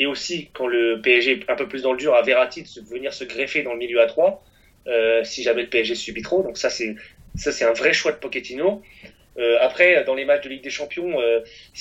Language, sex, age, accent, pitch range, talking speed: French, male, 20-39, French, 115-150 Hz, 255 wpm